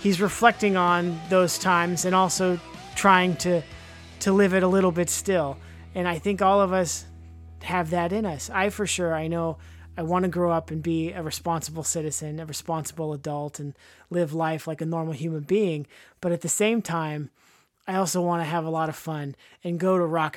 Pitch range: 155-185 Hz